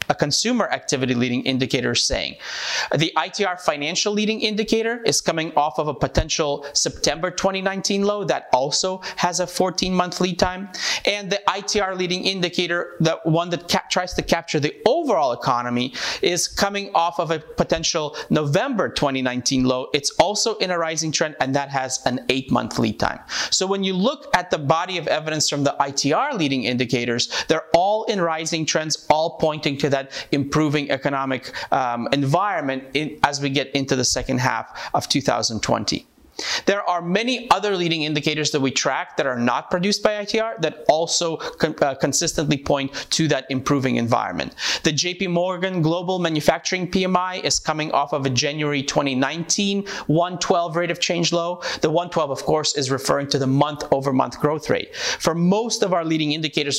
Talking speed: 170 wpm